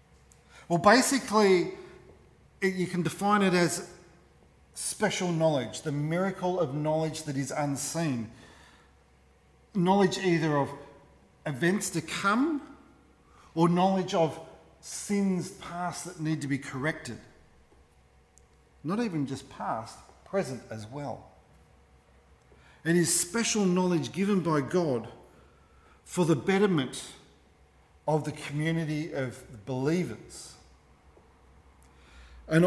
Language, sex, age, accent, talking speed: English, male, 40-59, Australian, 100 wpm